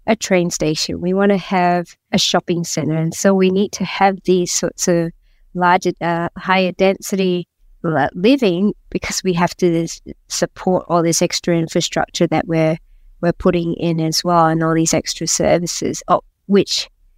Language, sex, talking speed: English, female, 170 wpm